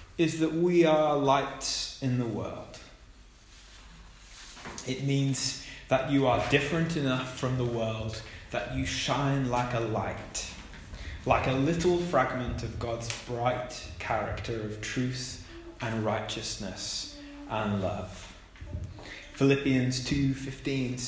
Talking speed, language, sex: 115 wpm, English, male